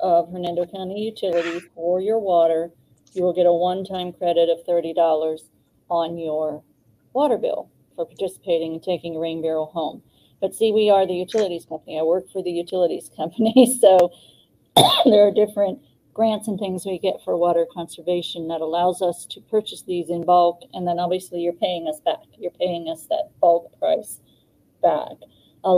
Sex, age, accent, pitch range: female, 40-59, American, 170-205 Hz